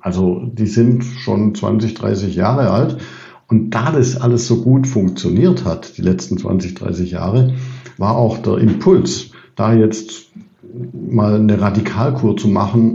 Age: 60-79